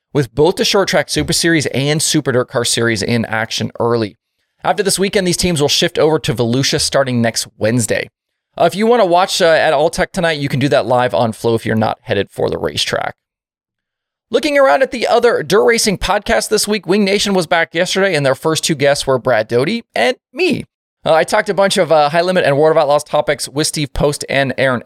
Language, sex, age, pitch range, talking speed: English, male, 20-39, 125-190 Hz, 230 wpm